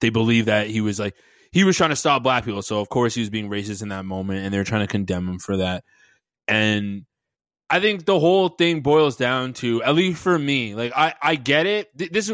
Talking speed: 250 wpm